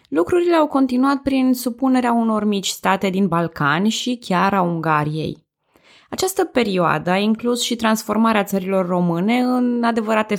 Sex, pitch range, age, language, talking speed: female, 165-235 Hz, 20-39, Romanian, 140 wpm